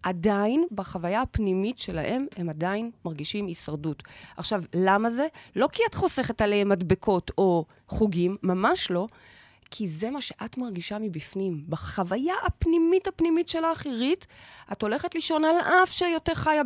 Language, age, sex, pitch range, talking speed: Hebrew, 30-49, female, 185-270 Hz, 140 wpm